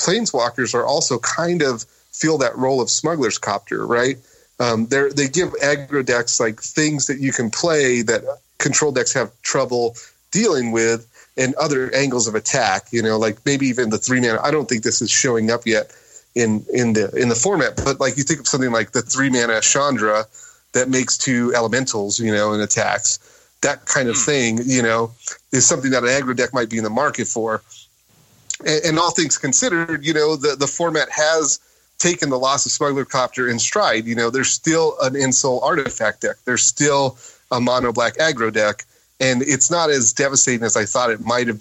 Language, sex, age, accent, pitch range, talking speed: English, male, 30-49, American, 115-140 Hz, 195 wpm